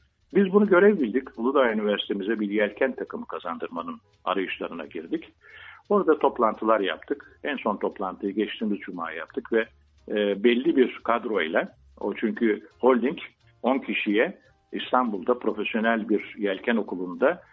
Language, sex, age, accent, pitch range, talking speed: English, male, 60-79, Turkish, 100-135 Hz, 115 wpm